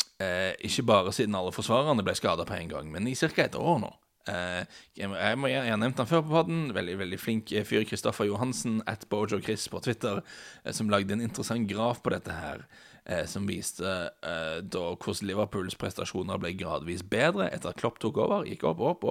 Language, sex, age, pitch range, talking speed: English, male, 30-49, 100-120 Hz, 200 wpm